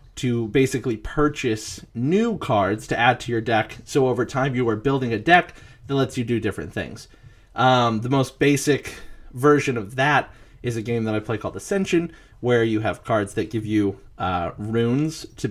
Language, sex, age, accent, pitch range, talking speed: English, male, 30-49, American, 110-135 Hz, 190 wpm